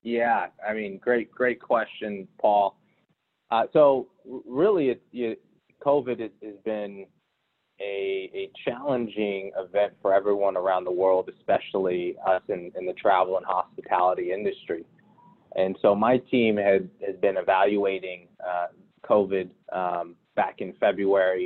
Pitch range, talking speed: 95-105 Hz, 130 wpm